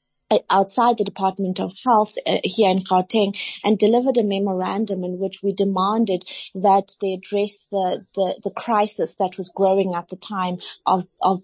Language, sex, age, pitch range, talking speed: English, female, 30-49, 190-215 Hz, 165 wpm